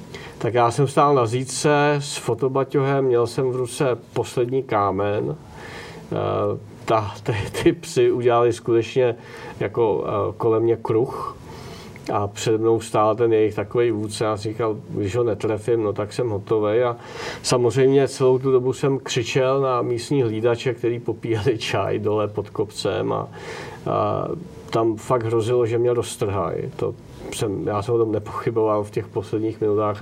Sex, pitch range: male, 110-125 Hz